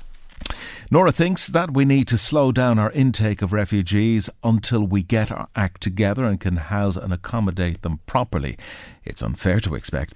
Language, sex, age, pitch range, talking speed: English, male, 60-79, 85-105 Hz, 170 wpm